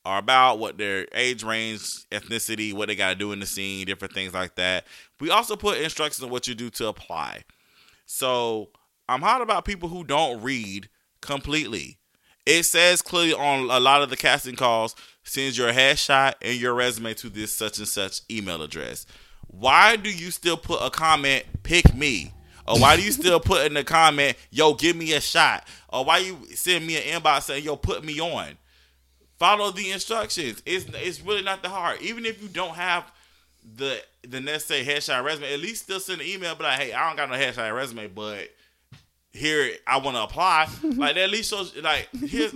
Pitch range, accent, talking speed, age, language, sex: 110-165 Hz, American, 200 wpm, 20-39, English, male